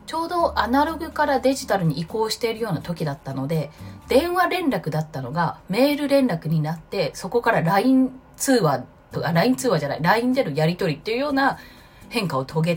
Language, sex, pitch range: Japanese, female, 155-260 Hz